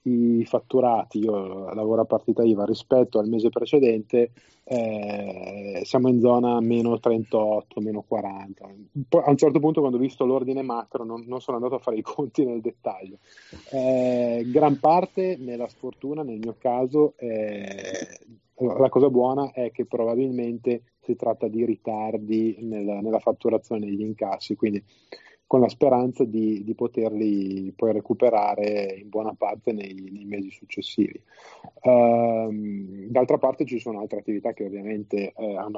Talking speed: 150 wpm